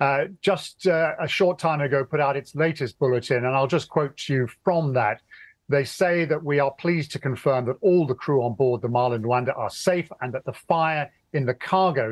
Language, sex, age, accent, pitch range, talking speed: English, male, 50-69, British, 130-155 Hz, 230 wpm